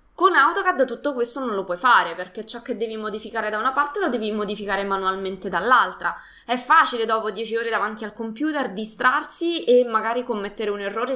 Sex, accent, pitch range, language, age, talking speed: female, native, 195-265 Hz, Italian, 20-39, 190 wpm